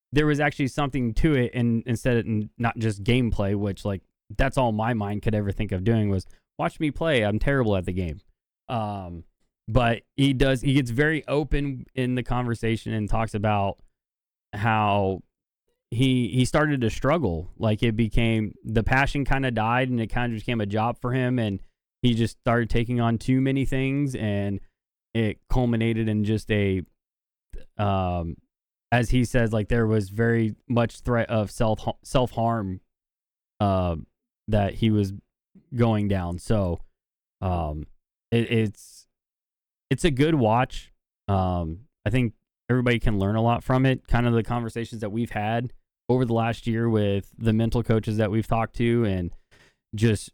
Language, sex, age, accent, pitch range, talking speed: English, male, 20-39, American, 105-125 Hz, 170 wpm